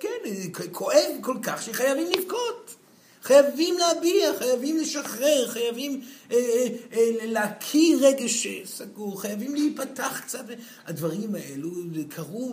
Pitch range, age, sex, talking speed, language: 185-285 Hz, 50-69, male, 100 wpm, Hebrew